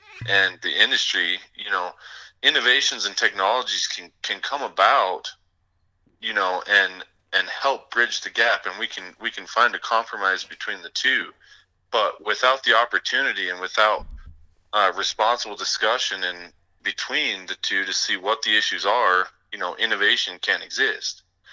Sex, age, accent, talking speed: male, 20-39, American, 155 wpm